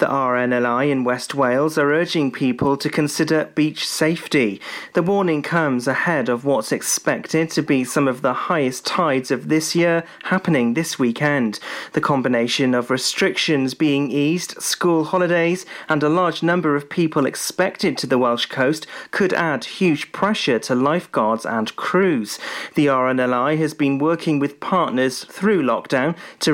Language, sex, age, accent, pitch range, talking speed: English, male, 40-59, British, 130-165 Hz, 155 wpm